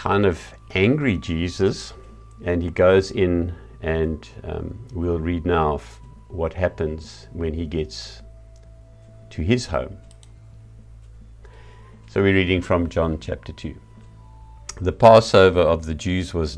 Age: 50-69